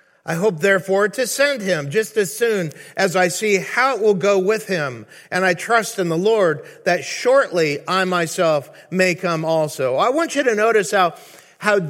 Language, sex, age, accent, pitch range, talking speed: English, male, 50-69, American, 175-235 Hz, 190 wpm